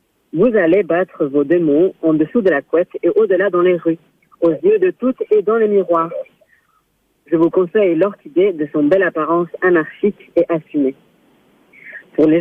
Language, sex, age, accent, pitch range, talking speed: French, female, 40-59, French, 155-205 Hz, 175 wpm